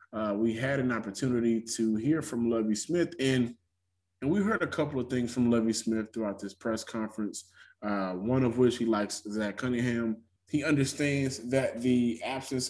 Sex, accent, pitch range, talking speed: male, American, 110-135 Hz, 180 wpm